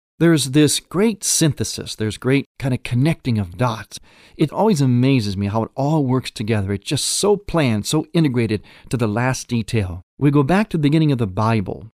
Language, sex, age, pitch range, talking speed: English, male, 40-59, 105-145 Hz, 195 wpm